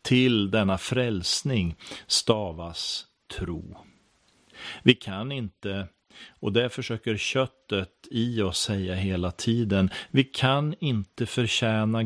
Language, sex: Swedish, male